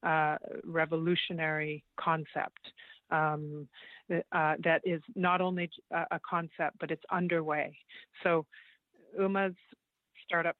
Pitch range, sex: 155-180 Hz, female